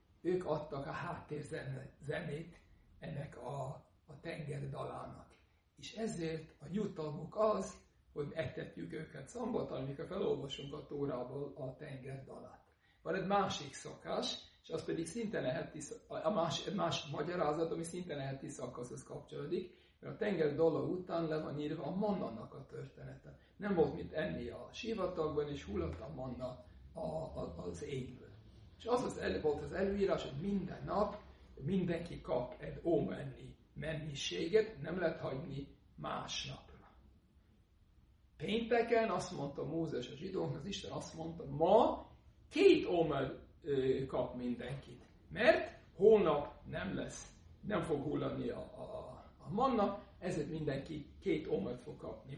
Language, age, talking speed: Hungarian, 60-79, 135 wpm